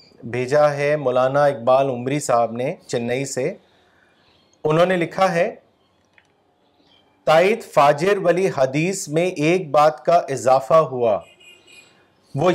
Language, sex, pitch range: Urdu, male, 150-185 Hz